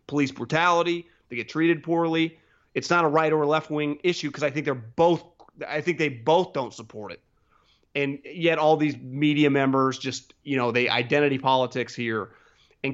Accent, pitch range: American, 130-160 Hz